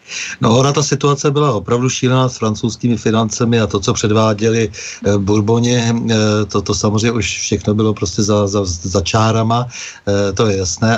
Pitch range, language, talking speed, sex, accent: 105-120 Hz, Czech, 160 wpm, male, native